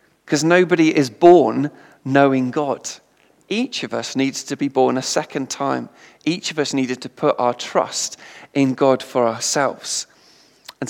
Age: 40-59